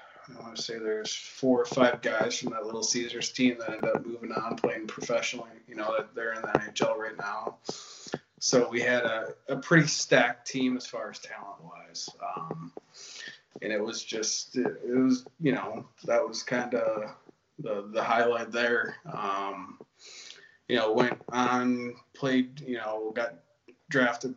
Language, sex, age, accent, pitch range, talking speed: English, male, 20-39, American, 110-130 Hz, 175 wpm